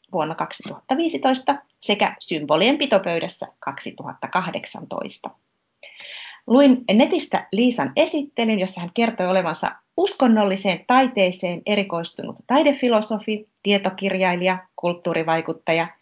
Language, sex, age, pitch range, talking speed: Finnish, female, 30-49, 180-255 Hz, 75 wpm